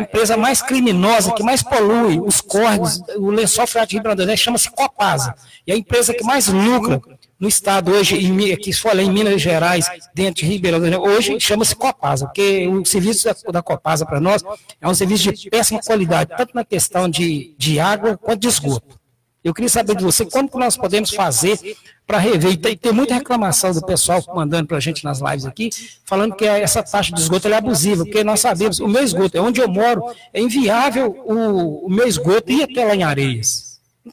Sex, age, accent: male, 60-79, Brazilian